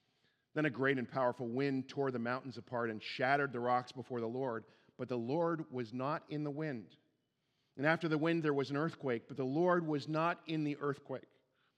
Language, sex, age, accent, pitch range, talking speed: English, male, 50-69, American, 125-155 Hz, 210 wpm